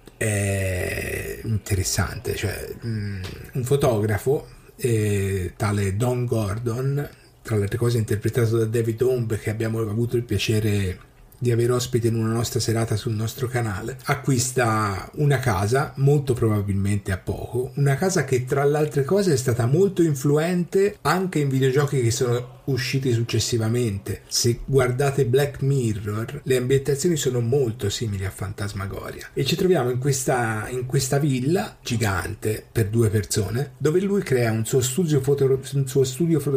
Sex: male